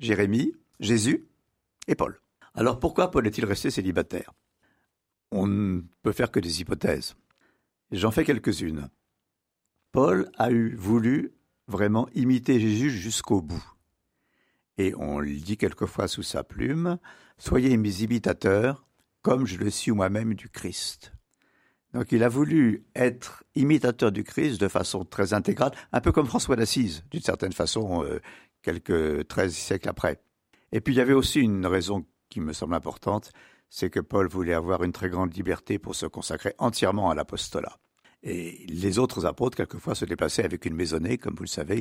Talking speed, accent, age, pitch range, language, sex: 165 wpm, French, 60-79, 90-115 Hz, French, male